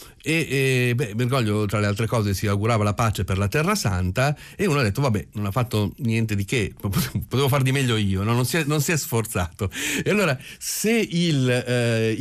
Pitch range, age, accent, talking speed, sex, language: 105-150 Hz, 40-59, native, 190 wpm, male, Italian